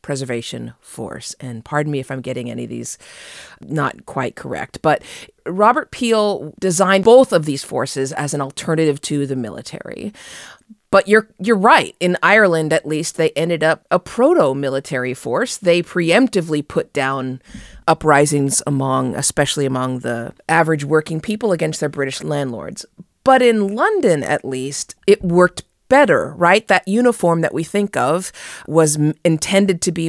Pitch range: 145-220 Hz